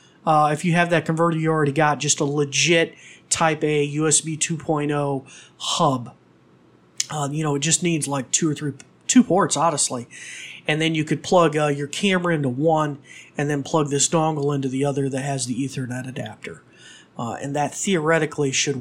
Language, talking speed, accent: English, 185 wpm, American